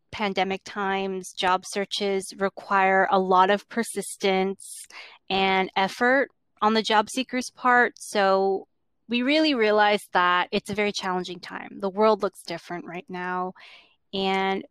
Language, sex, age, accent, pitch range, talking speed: English, female, 20-39, American, 185-215 Hz, 135 wpm